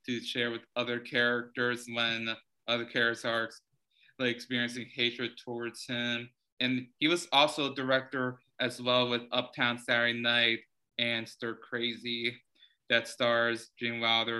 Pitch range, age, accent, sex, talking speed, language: 120-125 Hz, 20-39, American, male, 135 wpm, English